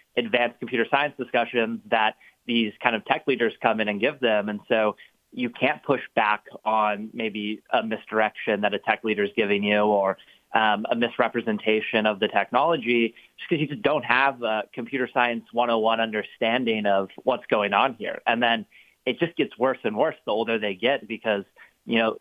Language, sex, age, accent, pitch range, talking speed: English, male, 30-49, American, 110-125 Hz, 185 wpm